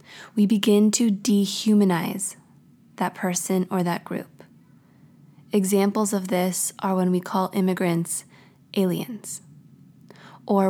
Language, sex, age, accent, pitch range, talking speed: English, female, 20-39, American, 180-210 Hz, 105 wpm